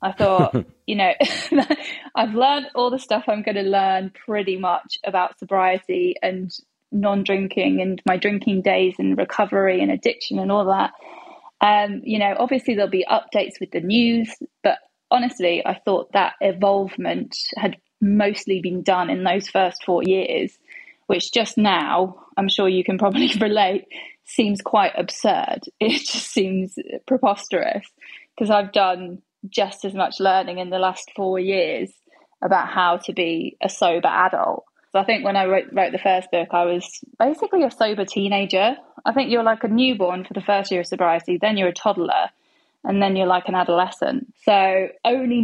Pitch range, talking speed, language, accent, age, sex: 185-240 Hz, 170 wpm, English, British, 20-39, female